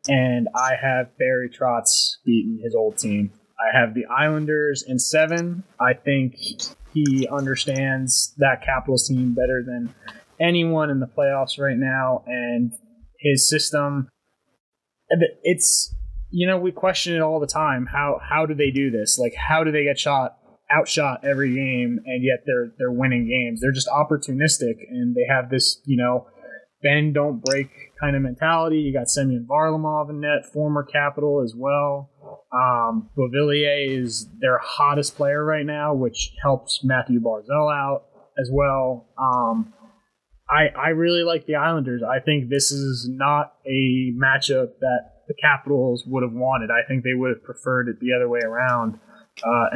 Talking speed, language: 160 wpm, English